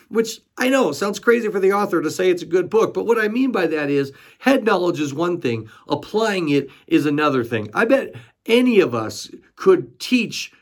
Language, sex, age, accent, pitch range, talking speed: English, male, 40-59, American, 140-205 Hz, 215 wpm